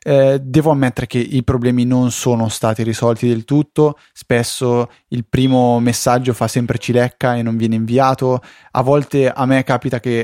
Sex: male